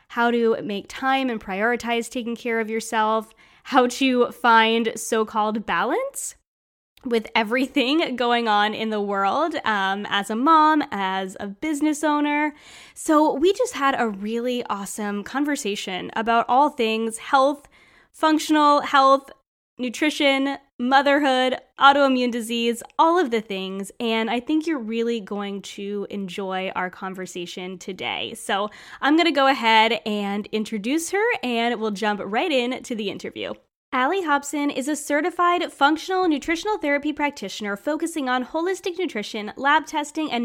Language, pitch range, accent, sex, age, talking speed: English, 225-305 Hz, American, female, 10-29, 140 wpm